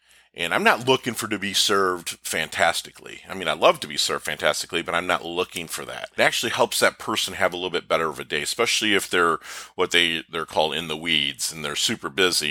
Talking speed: 240 wpm